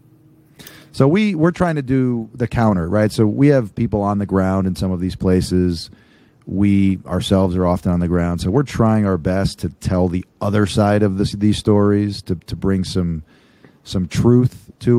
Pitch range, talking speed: 90-105 Hz, 195 wpm